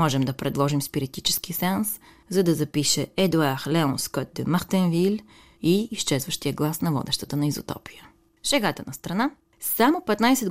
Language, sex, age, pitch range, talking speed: Bulgarian, female, 30-49, 145-205 Hz, 145 wpm